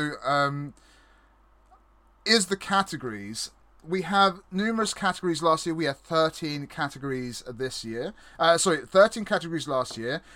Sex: male